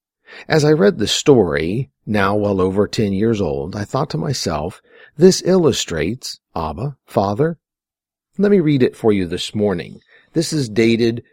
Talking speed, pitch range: 160 wpm, 95-140 Hz